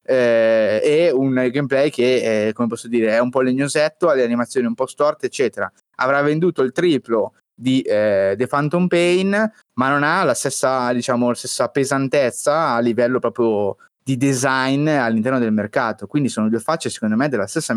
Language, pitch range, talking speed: Italian, 120-155 Hz, 180 wpm